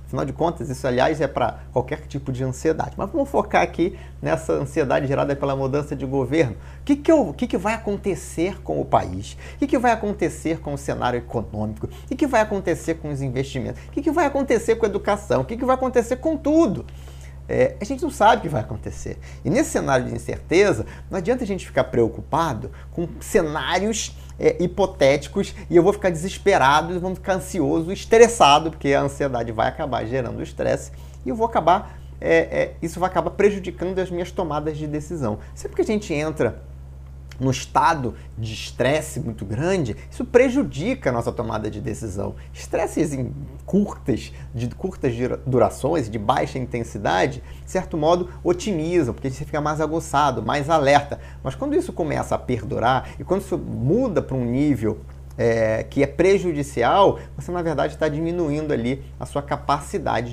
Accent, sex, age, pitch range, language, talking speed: Brazilian, male, 30-49, 115-185 Hz, Portuguese, 175 wpm